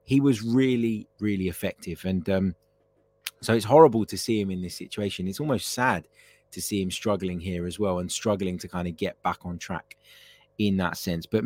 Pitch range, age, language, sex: 95-110 Hz, 20-39, English, male